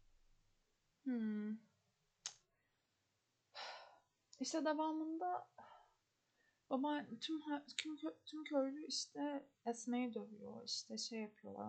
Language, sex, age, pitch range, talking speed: Turkish, female, 30-49, 200-260 Hz, 80 wpm